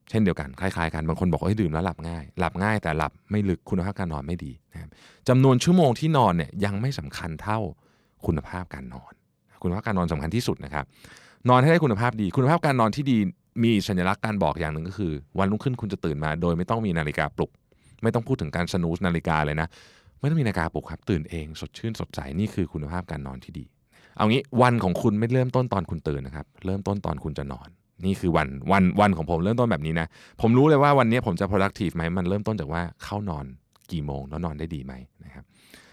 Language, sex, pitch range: Thai, male, 80-105 Hz